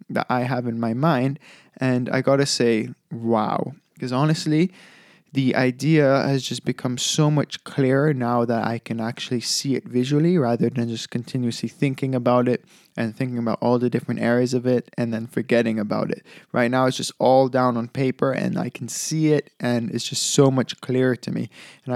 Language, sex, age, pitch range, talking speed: English, male, 20-39, 125-150 Hz, 200 wpm